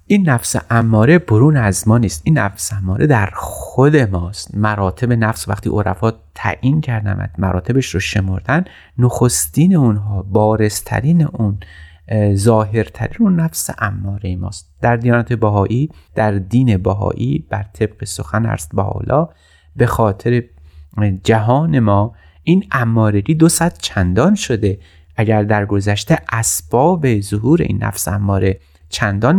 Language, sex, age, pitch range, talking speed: Persian, male, 30-49, 95-125 Hz, 125 wpm